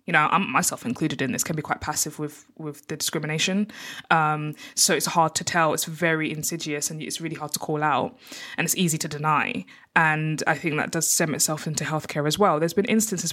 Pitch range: 160-210 Hz